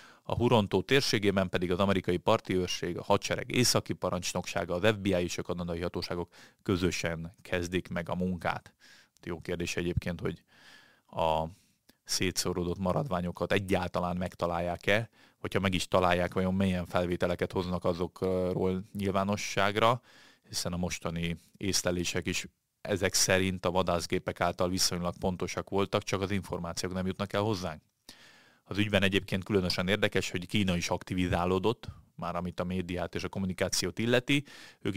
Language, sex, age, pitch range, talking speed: Hungarian, male, 30-49, 90-100 Hz, 135 wpm